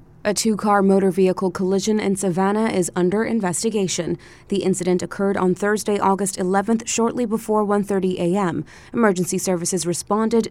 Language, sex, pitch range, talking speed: English, female, 175-210 Hz, 135 wpm